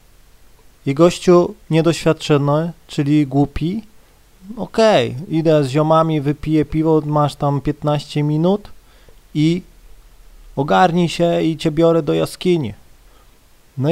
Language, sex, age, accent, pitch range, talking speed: Polish, male, 30-49, native, 135-175 Hz, 105 wpm